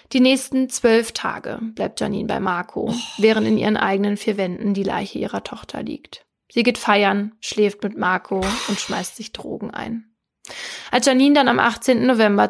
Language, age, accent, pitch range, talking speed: German, 20-39, German, 200-230 Hz, 175 wpm